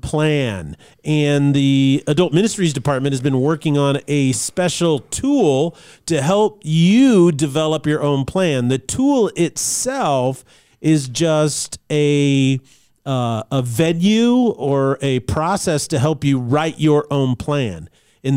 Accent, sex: American, male